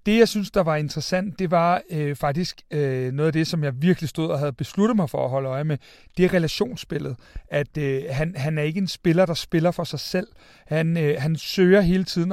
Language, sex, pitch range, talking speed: Danish, male, 150-180 Hz, 240 wpm